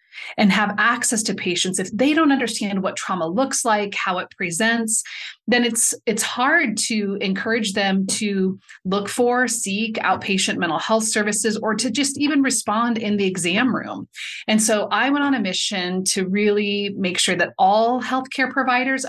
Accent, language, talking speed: American, English, 175 wpm